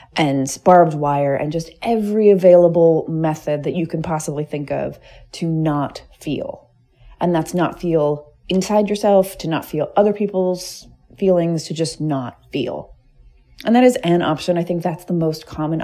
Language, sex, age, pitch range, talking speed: English, female, 30-49, 145-175 Hz, 165 wpm